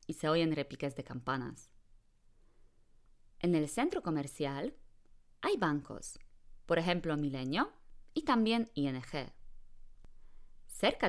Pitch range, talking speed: 135-175 Hz, 105 wpm